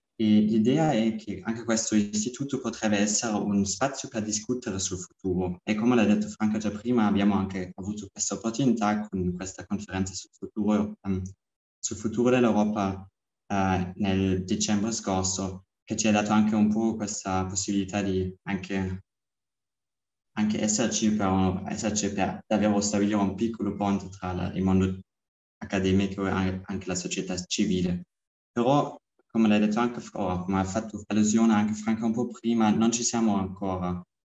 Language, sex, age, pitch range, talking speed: Italian, male, 20-39, 95-110 Hz, 155 wpm